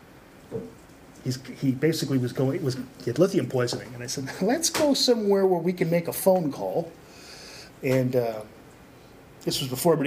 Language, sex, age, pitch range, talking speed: English, male, 30-49, 135-220 Hz, 180 wpm